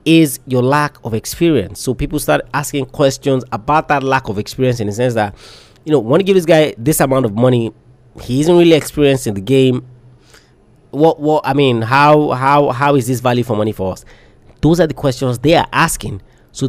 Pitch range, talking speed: 115-150 Hz, 210 wpm